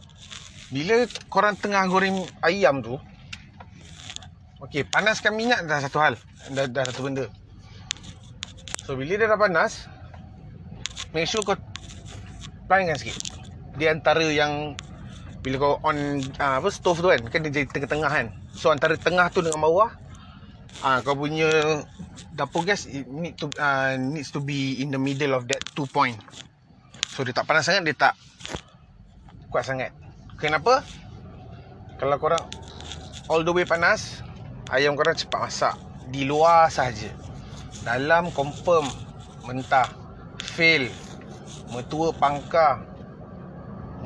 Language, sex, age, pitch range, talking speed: Malay, male, 30-49, 115-160 Hz, 130 wpm